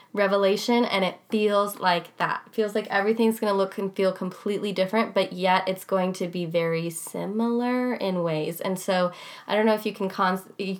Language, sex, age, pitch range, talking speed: English, female, 20-39, 175-205 Hz, 200 wpm